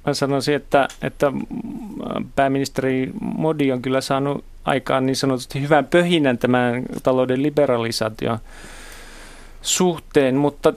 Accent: native